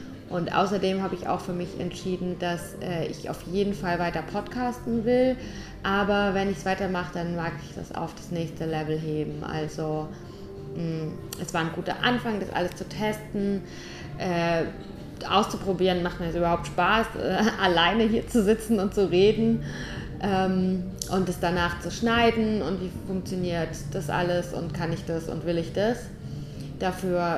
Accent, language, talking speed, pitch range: German, German, 165 wpm, 165-190 Hz